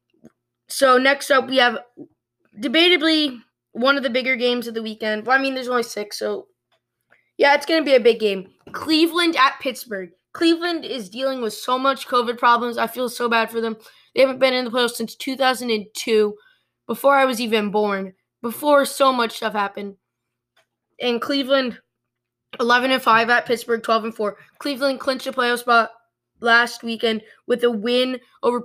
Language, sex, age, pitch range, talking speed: English, female, 10-29, 225-275 Hz, 170 wpm